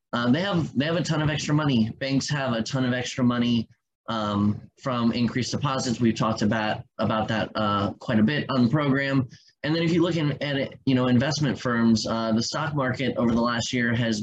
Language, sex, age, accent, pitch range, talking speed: English, male, 20-39, American, 110-130 Hz, 225 wpm